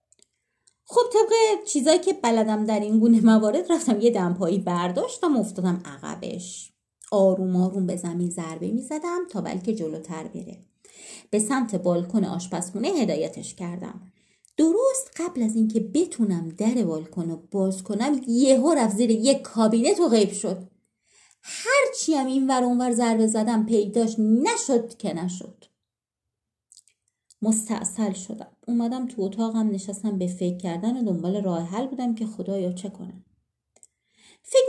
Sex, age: female, 30-49